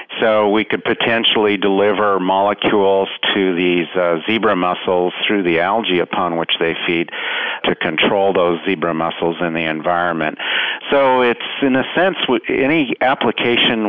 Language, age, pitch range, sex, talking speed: English, 50-69, 90-105 Hz, male, 145 wpm